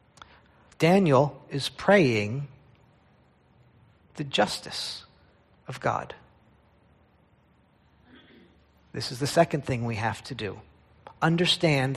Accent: American